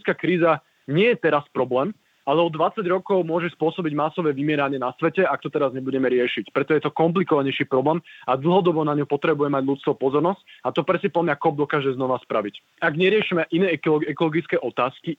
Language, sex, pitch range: Slovak, male, 145-175 Hz